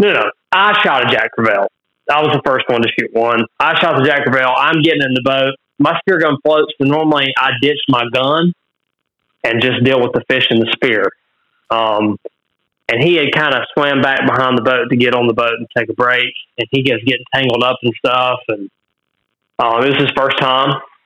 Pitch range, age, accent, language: 115-135 Hz, 30-49, American, English